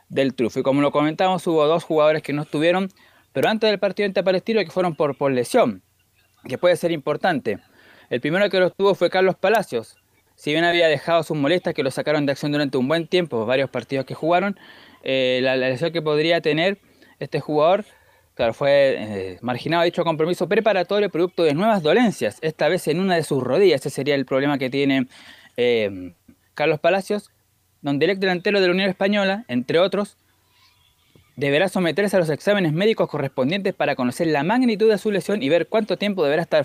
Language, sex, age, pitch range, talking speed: Spanish, male, 20-39, 140-190 Hz, 195 wpm